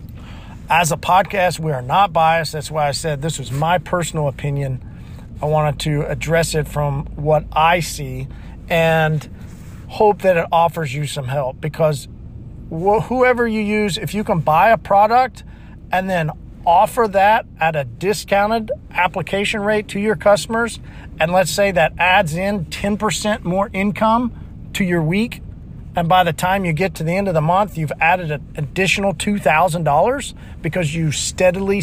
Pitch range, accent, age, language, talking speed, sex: 145-190 Hz, American, 40-59, English, 170 wpm, male